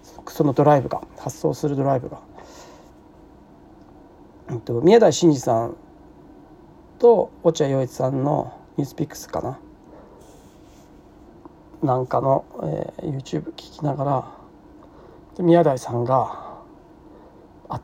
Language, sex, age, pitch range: Japanese, male, 40-59, 130-170 Hz